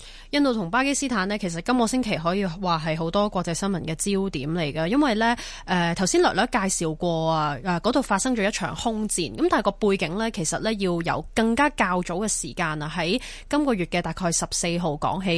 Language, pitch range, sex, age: Chinese, 170-225 Hz, female, 20-39